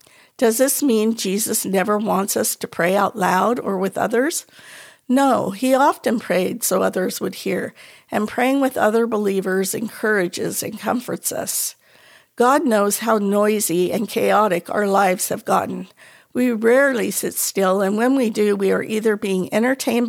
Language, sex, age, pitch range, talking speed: English, female, 50-69, 195-240 Hz, 160 wpm